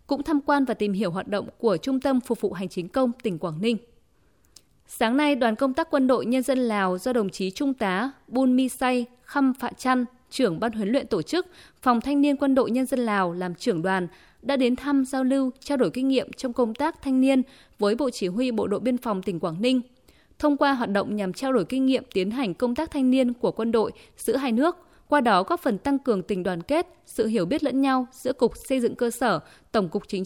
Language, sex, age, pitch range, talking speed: Vietnamese, female, 20-39, 210-270 Hz, 250 wpm